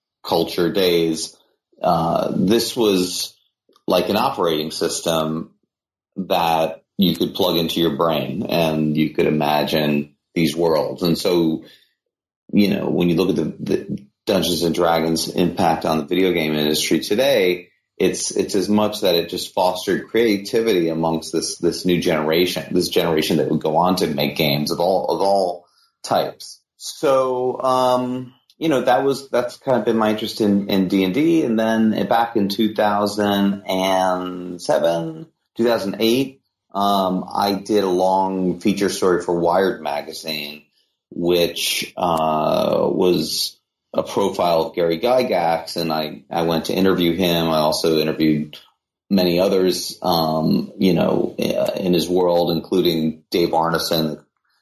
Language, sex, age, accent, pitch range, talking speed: English, male, 30-49, American, 80-100 Hz, 145 wpm